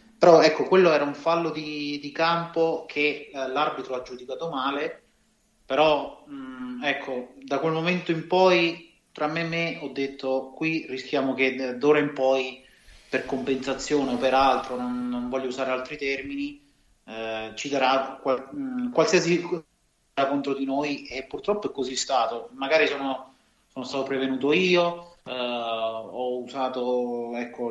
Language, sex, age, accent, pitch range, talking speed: Italian, male, 30-49, native, 130-155 Hz, 155 wpm